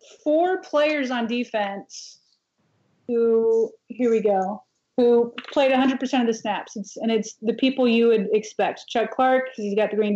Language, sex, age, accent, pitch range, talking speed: English, female, 30-49, American, 225-270 Hz, 170 wpm